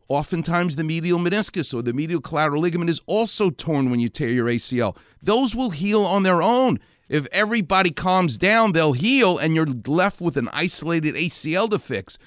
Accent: American